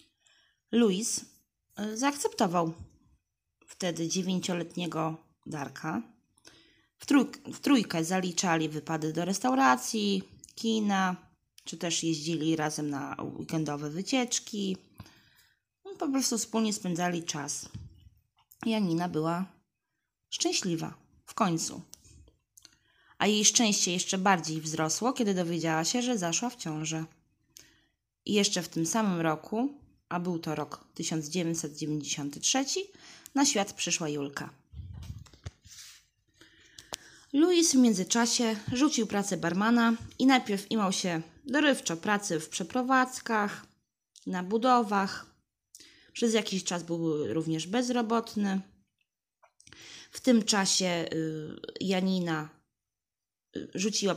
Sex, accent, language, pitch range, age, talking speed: female, native, Polish, 165-230 Hz, 20-39, 95 wpm